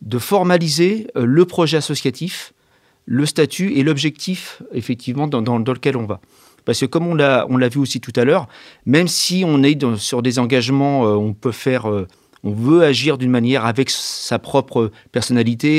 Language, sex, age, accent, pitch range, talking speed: French, male, 40-59, French, 125-170 Hz, 180 wpm